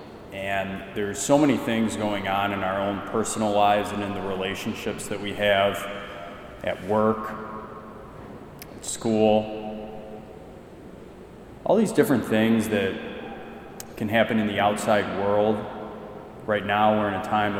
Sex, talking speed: male, 135 wpm